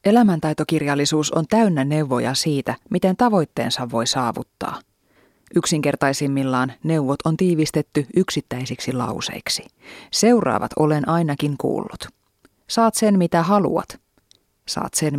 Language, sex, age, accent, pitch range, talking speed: Finnish, female, 30-49, native, 145-190 Hz, 100 wpm